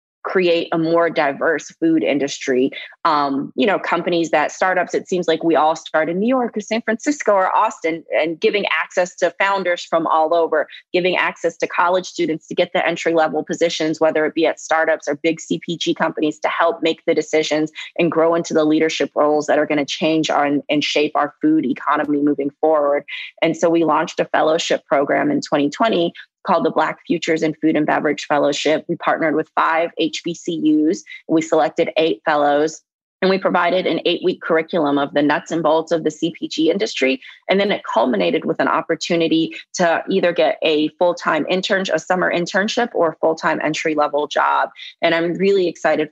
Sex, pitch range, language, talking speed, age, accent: female, 155-180 Hz, English, 190 wpm, 30-49, American